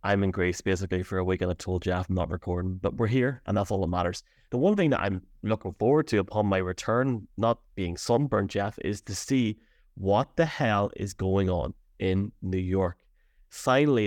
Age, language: 20-39, English